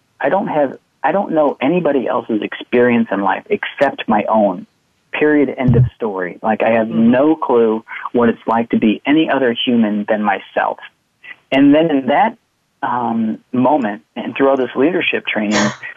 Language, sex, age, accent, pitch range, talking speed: English, male, 40-59, American, 110-135 Hz, 165 wpm